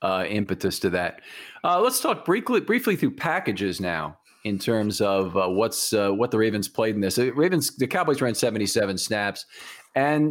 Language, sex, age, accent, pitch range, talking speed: English, male, 40-59, American, 105-135 Hz, 185 wpm